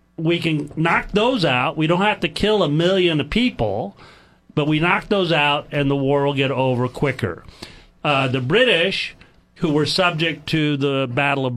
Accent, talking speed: American, 185 wpm